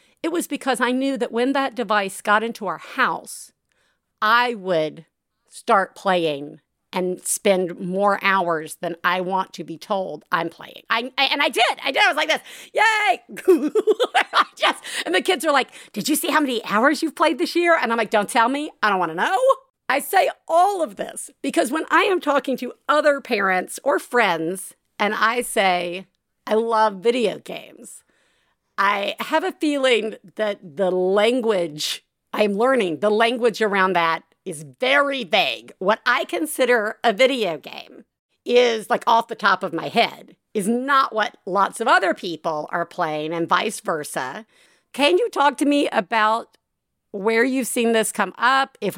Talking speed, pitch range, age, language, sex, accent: 180 wpm, 190-275 Hz, 50-69, English, female, American